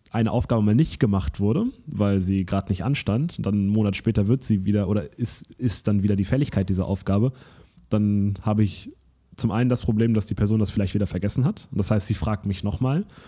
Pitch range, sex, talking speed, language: 100-120 Hz, male, 215 wpm, German